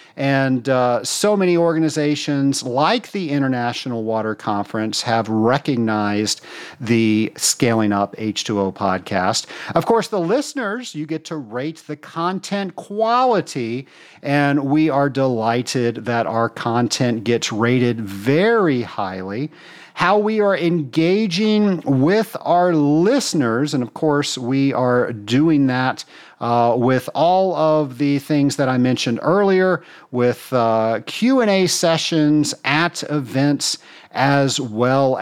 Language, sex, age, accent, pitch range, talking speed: English, male, 50-69, American, 120-170 Hz, 120 wpm